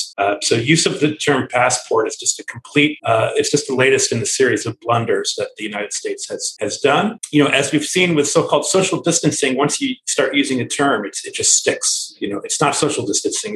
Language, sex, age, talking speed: English, male, 30-49, 235 wpm